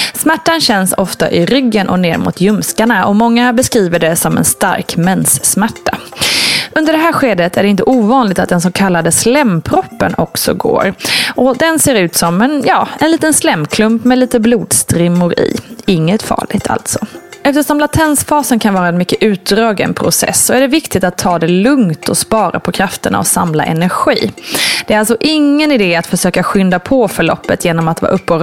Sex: female